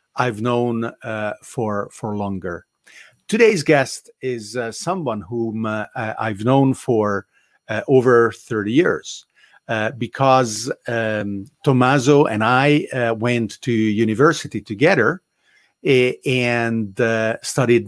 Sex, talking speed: male, 115 wpm